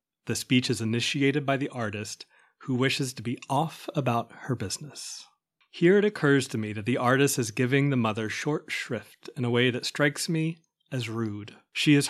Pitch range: 115-140 Hz